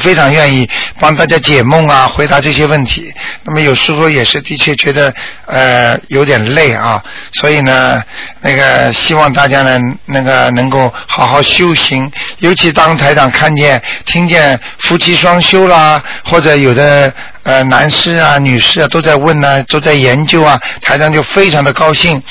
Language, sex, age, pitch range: Chinese, male, 50-69, 135-155 Hz